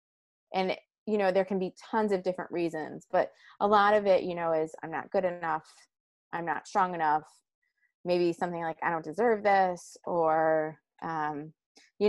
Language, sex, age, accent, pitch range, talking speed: English, female, 20-39, American, 170-215 Hz, 180 wpm